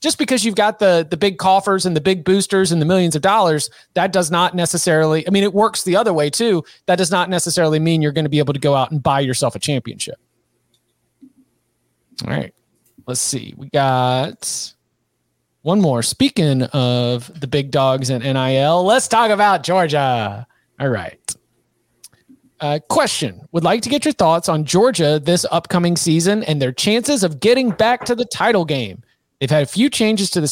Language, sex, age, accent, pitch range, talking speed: English, male, 30-49, American, 150-195 Hz, 195 wpm